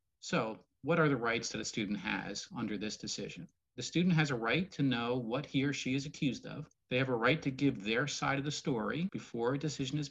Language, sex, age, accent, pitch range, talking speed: English, male, 40-59, American, 120-150 Hz, 245 wpm